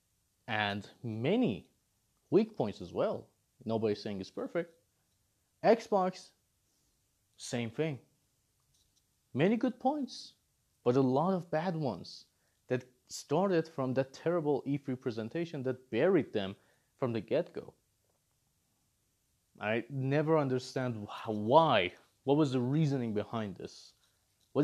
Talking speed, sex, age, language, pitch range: 115 wpm, male, 30-49, English, 115-155 Hz